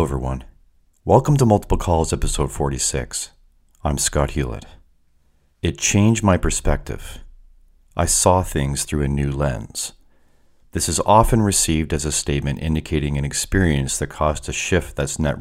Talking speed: 145 wpm